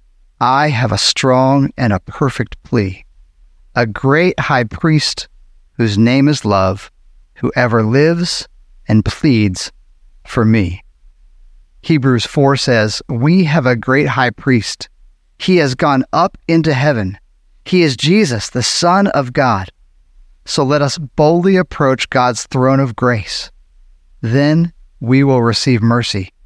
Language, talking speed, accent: English, 135 wpm, American